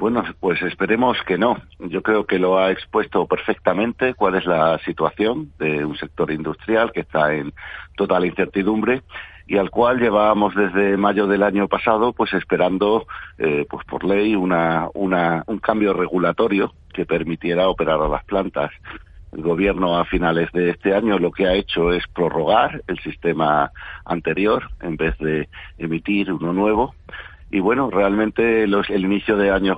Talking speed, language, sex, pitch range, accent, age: 160 wpm, Spanish, male, 80-100 Hz, Spanish, 50-69